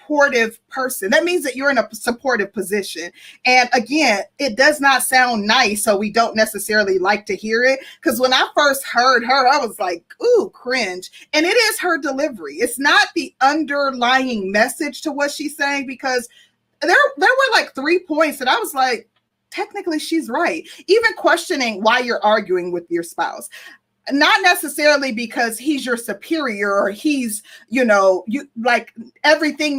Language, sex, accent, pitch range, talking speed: English, female, American, 225-295 Hz, 170 wpm